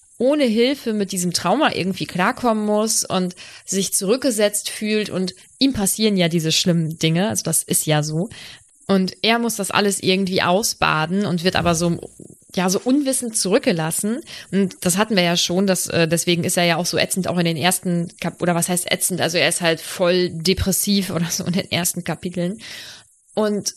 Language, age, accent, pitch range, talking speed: German, 20-39, German, 175-205 Hz, 185 wpm